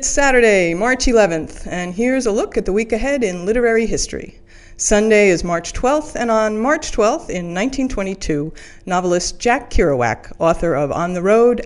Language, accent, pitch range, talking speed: English, American, 185-245 Hz, 170 wpm